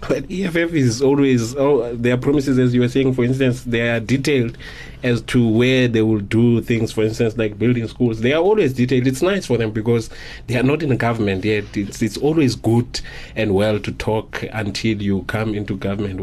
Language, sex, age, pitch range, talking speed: English, male, 30-49, 110-125 Hz, 215 wpm